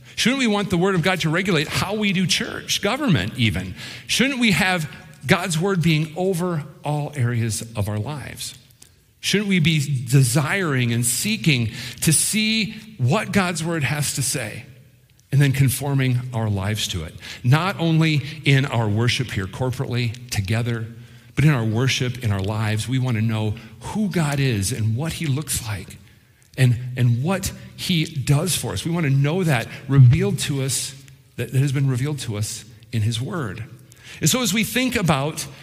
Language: English